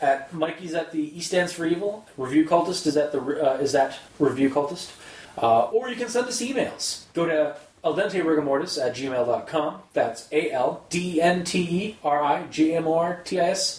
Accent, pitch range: American, 145-195 Hz